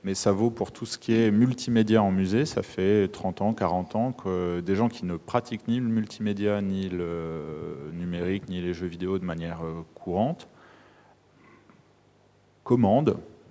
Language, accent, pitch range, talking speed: French, French, 95-115 Hz, 165 wpm